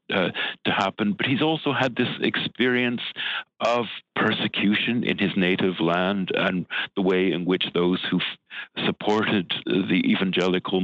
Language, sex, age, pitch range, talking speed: English, male, 60-79, 90-135 Hz, 145 wpm